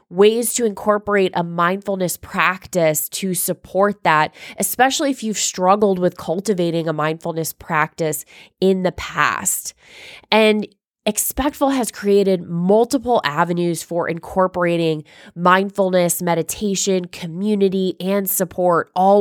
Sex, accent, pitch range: female, American, 170-210 Hz